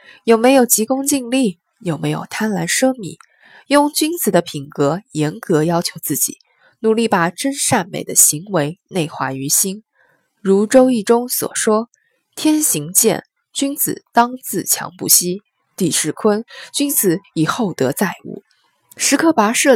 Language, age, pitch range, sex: Chinese, 20-39, 165-250 Hz, female